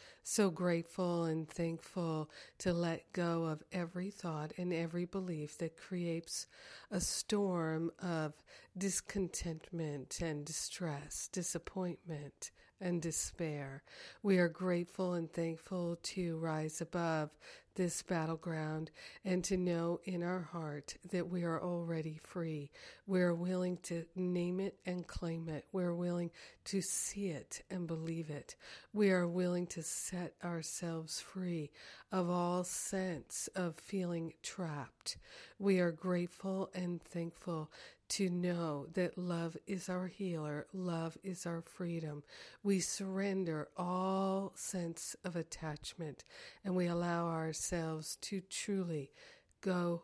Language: English